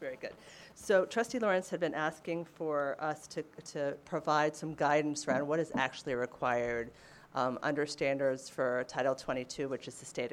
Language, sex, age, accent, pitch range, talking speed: English, female, 30-49, American, 135-160 Hz, 175 wpm